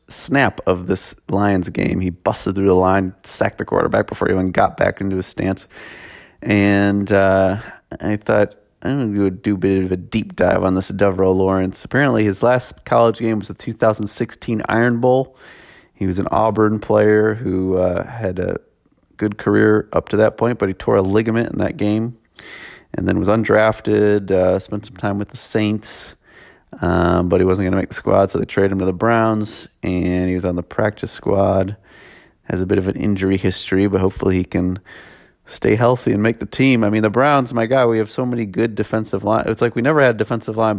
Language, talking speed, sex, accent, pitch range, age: English, 210 wpm, male, American, 95-110 Hz, 30-49